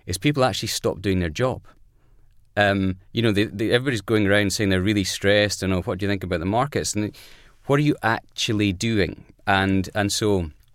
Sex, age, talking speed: male, 30-49, 220 wpm